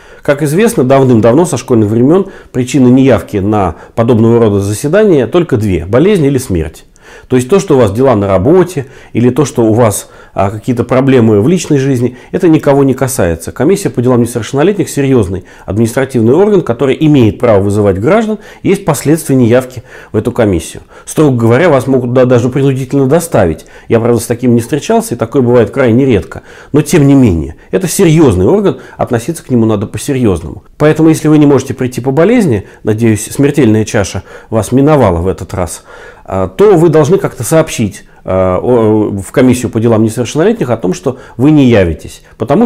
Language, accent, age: Russian, native, 40-59